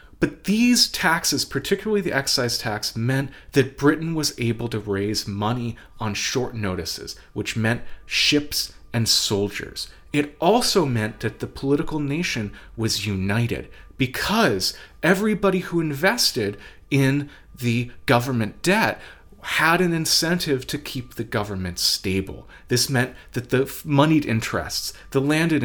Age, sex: 30-49, male